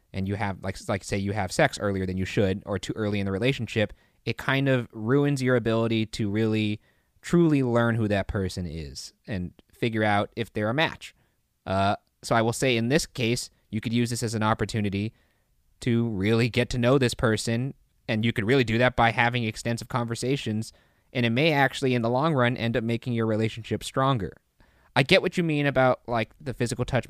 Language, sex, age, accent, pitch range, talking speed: English, male, 20-39, American, 95-120 Hz, 215 wpm